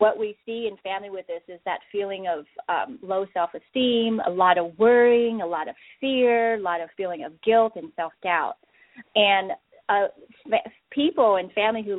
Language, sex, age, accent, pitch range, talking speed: English, female, 30-49, American, 175-225 Hz, 180 wpm